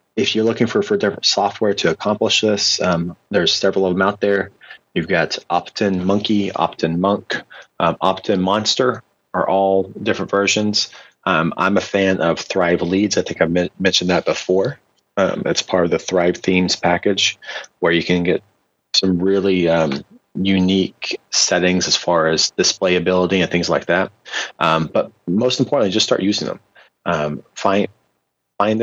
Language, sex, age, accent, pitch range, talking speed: English, male, 30-49, American, 90-105 Hz, 165 wpm